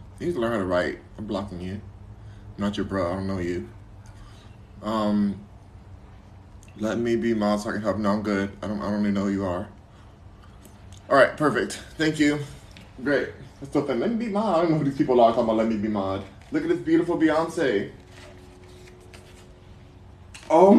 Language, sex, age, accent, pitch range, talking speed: English, male, 20-39, American, 90-145 Hz, 195 wpm